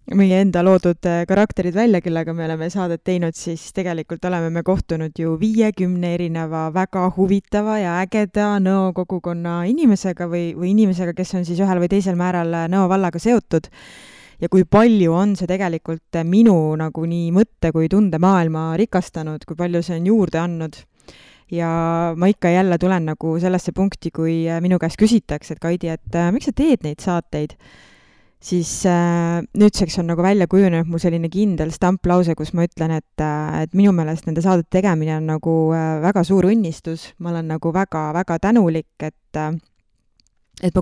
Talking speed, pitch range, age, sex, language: 165 wpm, 160-190 Hz, 20-39, female, English